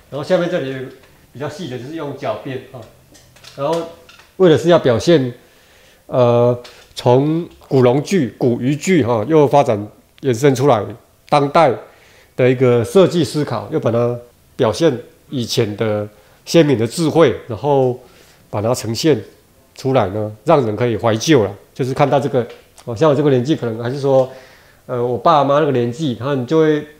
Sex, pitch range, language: male, 115-145 Hz, Chinese